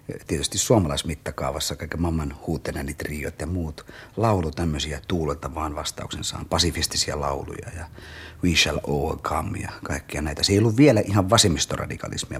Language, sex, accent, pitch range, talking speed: Finnish, male, native, 80-100 Hz, 140 wpm